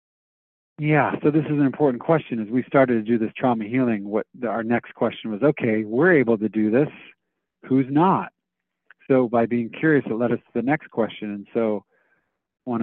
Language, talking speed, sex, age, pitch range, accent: English, 195 wpm, male, 40-59, 105-125 Hz, American